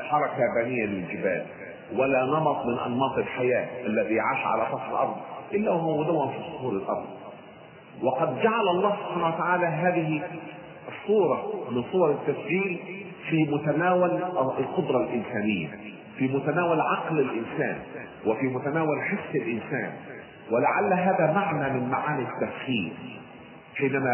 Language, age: Arabic, 50-69